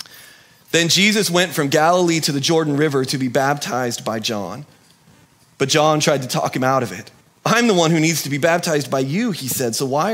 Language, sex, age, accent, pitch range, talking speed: English, male, 30-49, American, 115-150 Hz, 220 wpm